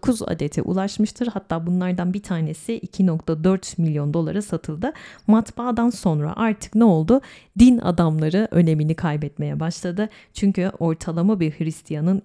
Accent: native